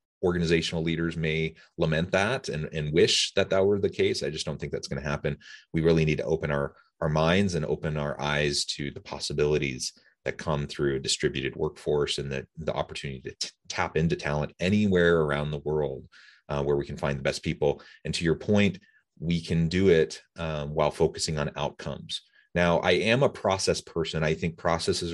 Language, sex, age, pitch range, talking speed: English, male, 30-49, 75-85 Hz, 205 wpm